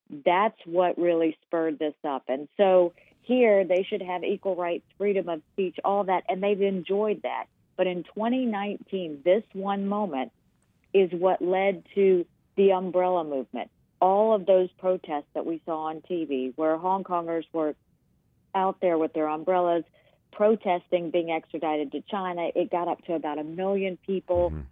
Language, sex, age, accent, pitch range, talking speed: English, female, 50-69, American, 160-190 Hz, 165 wpm